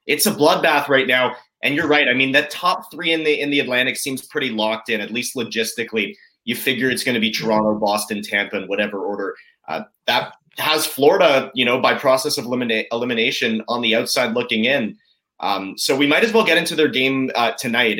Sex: male